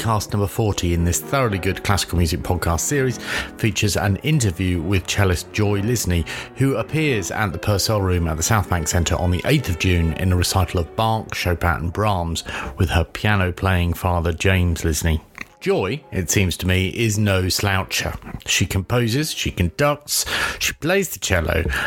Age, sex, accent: 40-59, male, British